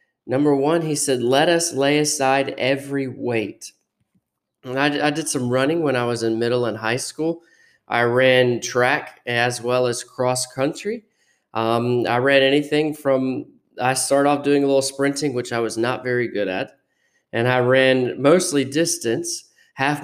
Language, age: English, 20-39